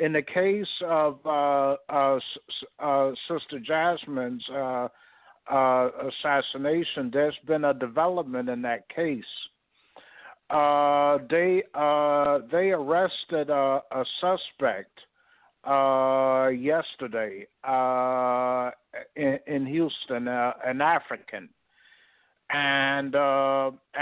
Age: 60-79